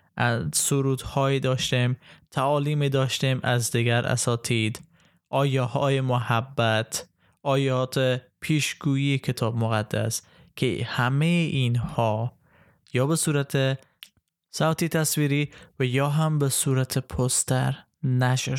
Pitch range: 120-145 Hz